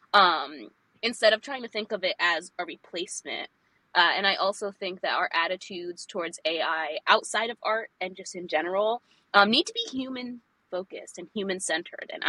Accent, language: American, English